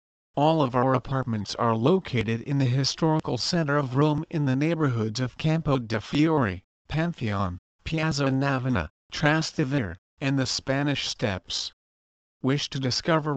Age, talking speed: 50-69, 135 wpm